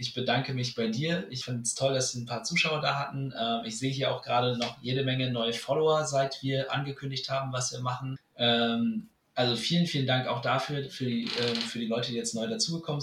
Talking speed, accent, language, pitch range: 220 wpm, German, German, 120-140 Hz